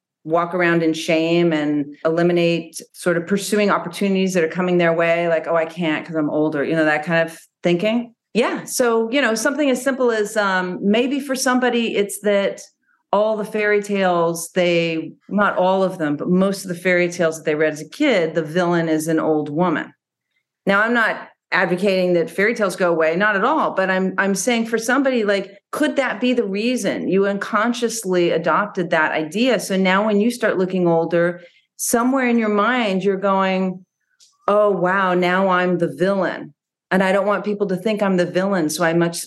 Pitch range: 170-210 Hz